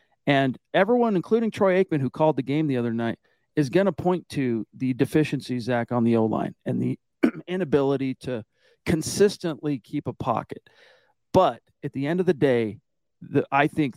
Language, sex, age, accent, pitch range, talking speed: English, male, 40-59, American, 125-165 Hz, 175 wpm